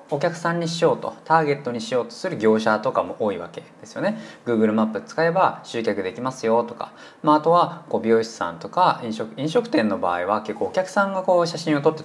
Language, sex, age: Japanese, male, 20-39